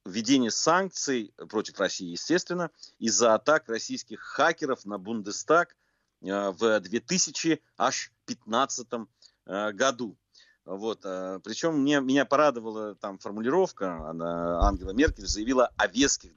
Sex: male